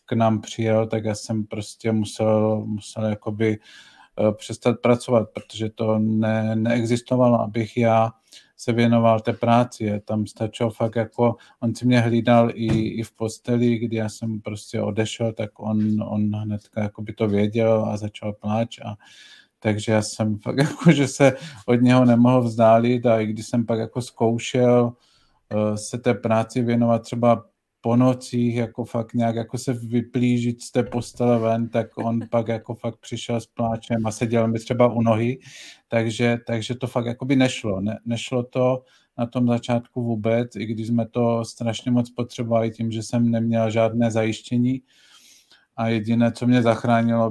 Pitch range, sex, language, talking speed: 110-120 Hz, male, Czech, 165 wpm